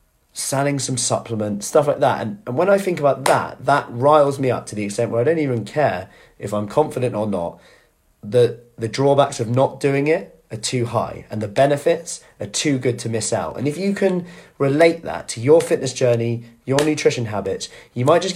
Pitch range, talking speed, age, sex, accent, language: 115-155 Hz, 215 wpm, 30-49, male, British, English